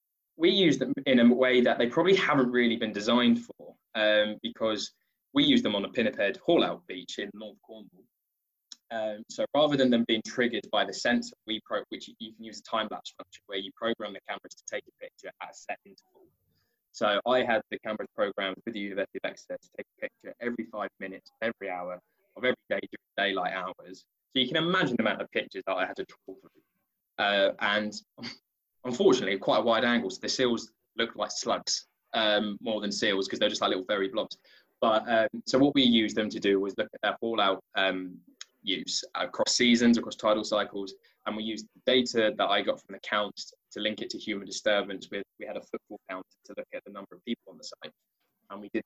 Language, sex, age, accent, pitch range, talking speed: English, male, 20-39, British, 105-130 Hz, 225 wpm